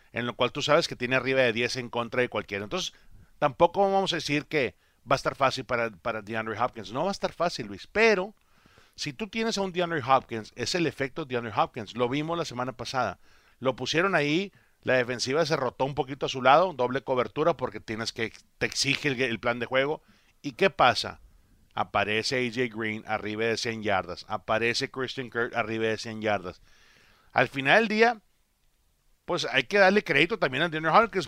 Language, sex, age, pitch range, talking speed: English, male, 40-59, 115-155 Hz, 205 wpm